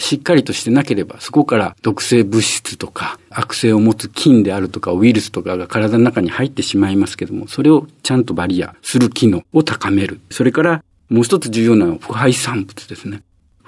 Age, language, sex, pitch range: 50-69, Japanese, male, 105-155 Hz